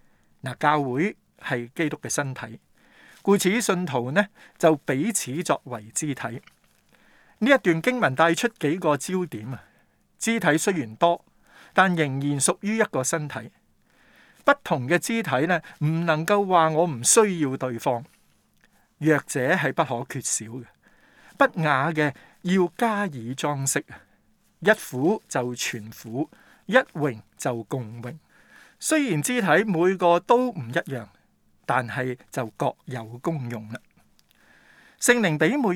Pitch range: 130-180 Hz